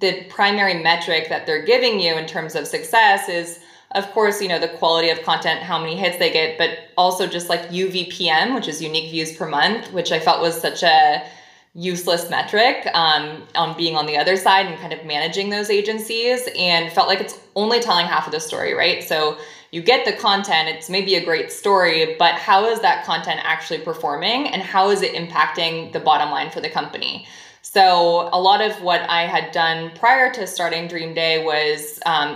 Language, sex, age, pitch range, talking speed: English, female, 20-39, 165-200 Hz, 205 wpm